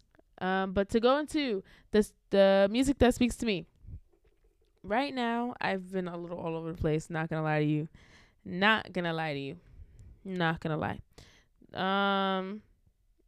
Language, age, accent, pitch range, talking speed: English, 20-39, American, 170-205 Hz, 175 wpm